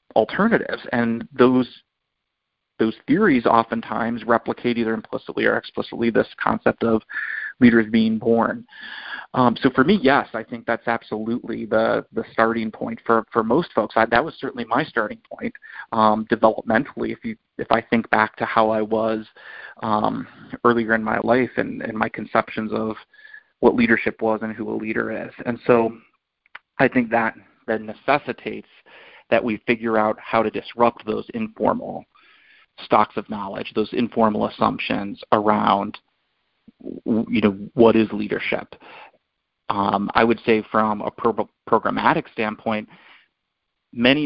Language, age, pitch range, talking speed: English, 30-49, 110-120 Hz, 145 wpm